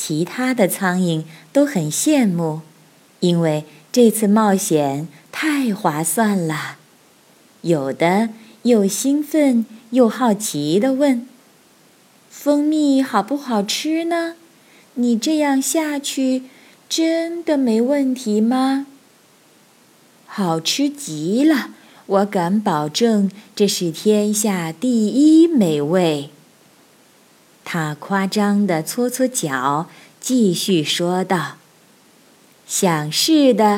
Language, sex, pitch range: Chinese, female, 165-255 Hz